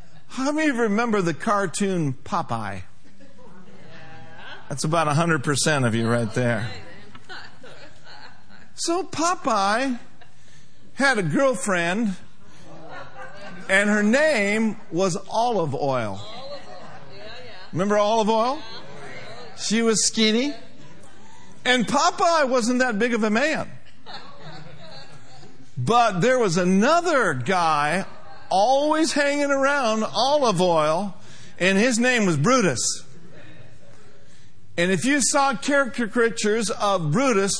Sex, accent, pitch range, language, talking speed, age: male, American, 160-230 Hz, English, 100 wpm, 50-69